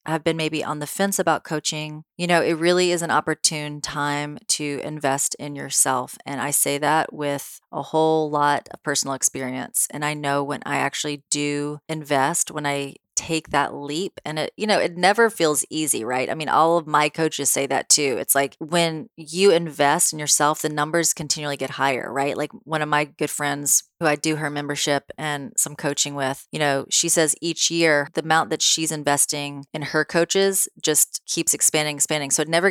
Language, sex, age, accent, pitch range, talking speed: English, female, 30-49, American, 145-160 Hz, 205 wpm